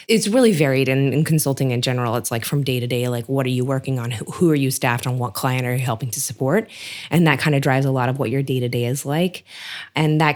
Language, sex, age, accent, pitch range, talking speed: English, female, 20-39, American, 135-170 Hz, 285 wpm